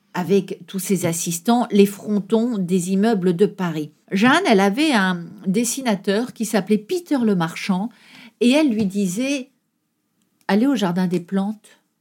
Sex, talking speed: female, 150 wpm